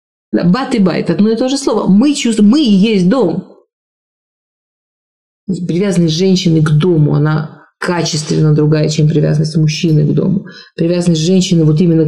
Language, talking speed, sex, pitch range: Russian, 145 wpm, female, 165-225 Hz